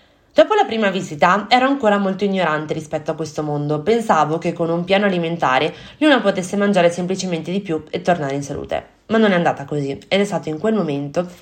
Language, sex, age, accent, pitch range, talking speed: Italian, female, 20-39, native, 150-190 Hz, 205 wpm